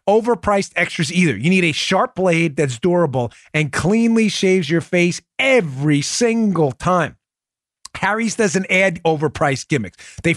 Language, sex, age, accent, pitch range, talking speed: English, male, 30-49, American, 140-190 Hz, 140 wpm